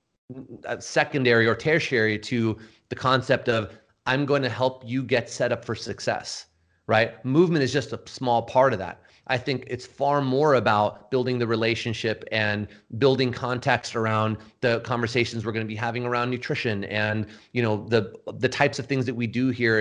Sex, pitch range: male, 110-130 Hz